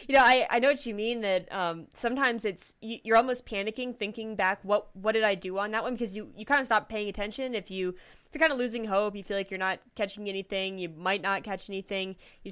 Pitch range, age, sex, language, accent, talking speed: 185-220 Hz, 10-29, female, English, American, 260 wpm